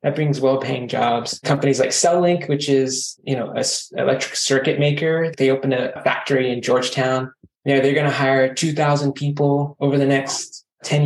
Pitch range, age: 130-145 Hz, 20-39